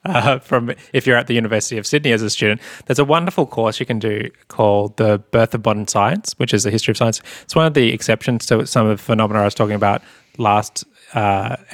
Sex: male